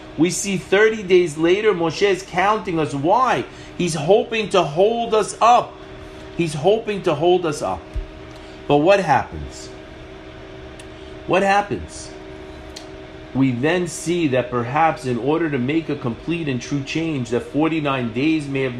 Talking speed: 145 wpm